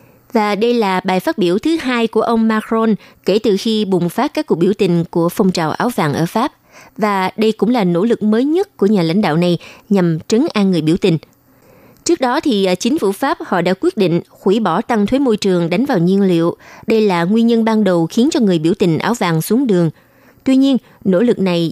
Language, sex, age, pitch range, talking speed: Vietnamese, female, 20-39, 180-230 Hz, 240 wpm